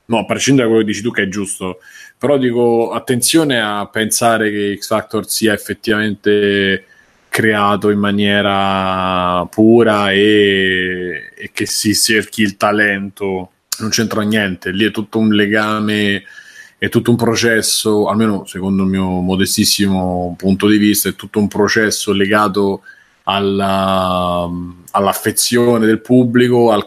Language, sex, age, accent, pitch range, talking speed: Italian, male, 30-49, native, 95-110 Hz, 140 wpm